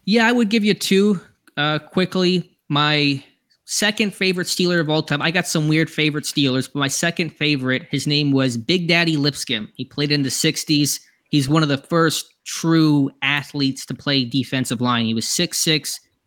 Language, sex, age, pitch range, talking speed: German, male, 20-39, 120-145 Hz, 185 wpm